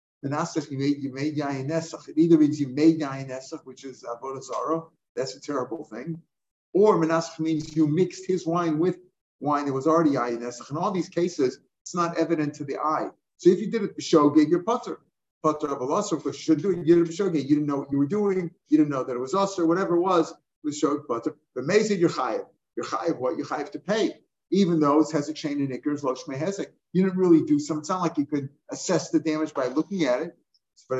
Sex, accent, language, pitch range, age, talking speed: male, American, English, 145-175 Hz, 50-69, 230 wpm